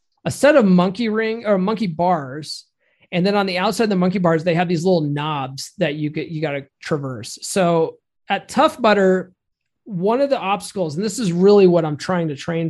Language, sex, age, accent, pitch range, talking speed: English, male, 30-49, American, 155-200 Hz, 215 wpm